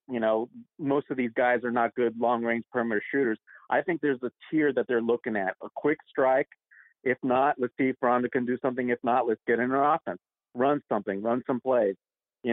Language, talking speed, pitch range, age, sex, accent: English, 220 wpm, 115-140 Hz, 50-69, male, American